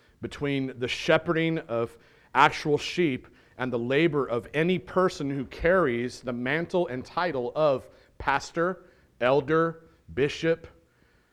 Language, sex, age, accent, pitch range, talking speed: English, male, 40-59, American, 130-185 Hz, 115 wpm